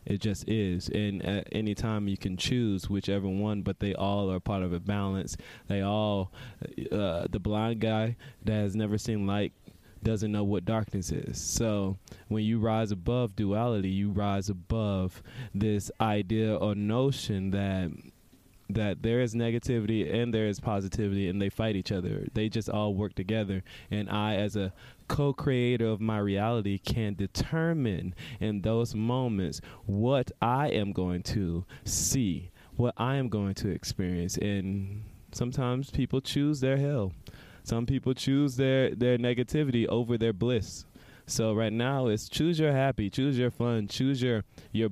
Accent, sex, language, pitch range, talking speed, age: American, male, English, 100-125 Hz, 160 wpm, 20-39